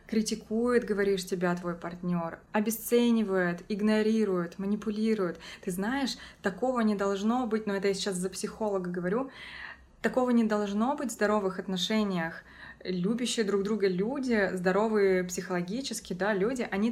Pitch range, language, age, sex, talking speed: 190-220 Hz, Russian, 20-39, female, 130 wpm